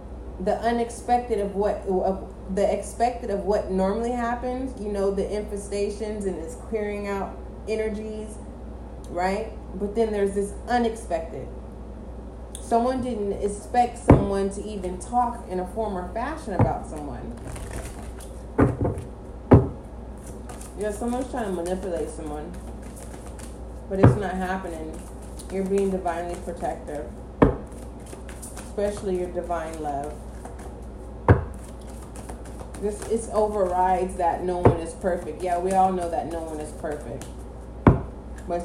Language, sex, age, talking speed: English, female, 30-49, 120 wpm